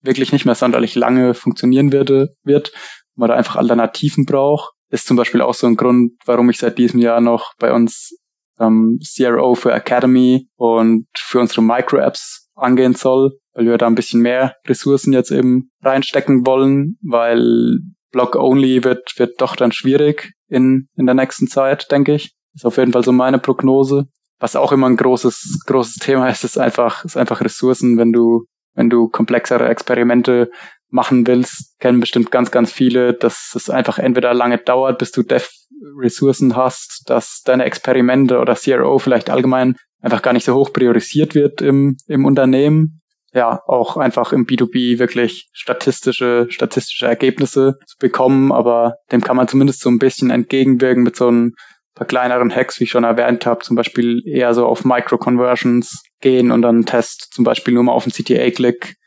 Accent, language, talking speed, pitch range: German, German, 175 wpm, 120-130 Hz